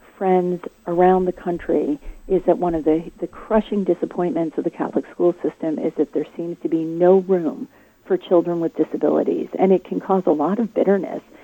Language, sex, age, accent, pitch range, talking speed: English, female, 40-59, American, 165-215 Hz, 195 wpm